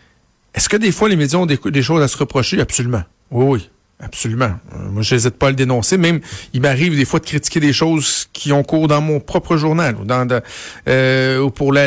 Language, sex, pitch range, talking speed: French, male, 120-145 Hz, 245 wpm